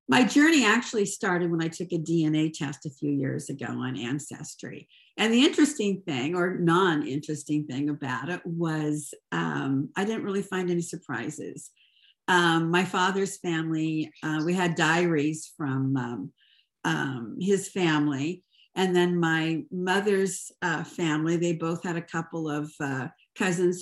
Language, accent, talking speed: English, American, 150 wpm